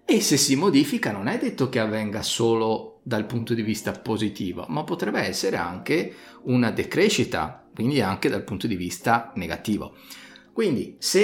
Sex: male